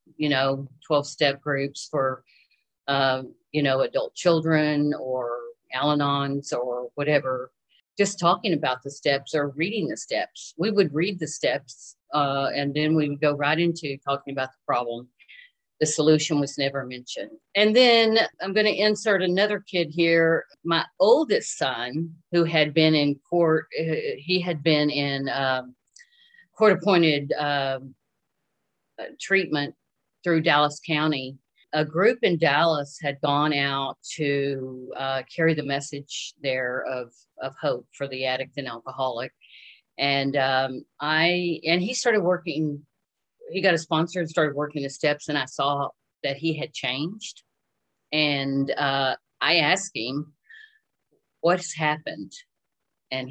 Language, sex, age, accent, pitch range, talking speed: English, female, 50-69, American, 140-170 Hz, 145 wpm